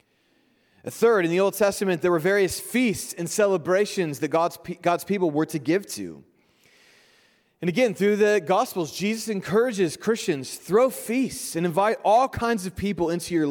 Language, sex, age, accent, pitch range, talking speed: English, male, 30-49, American, 140-190 Hz, 165 wpm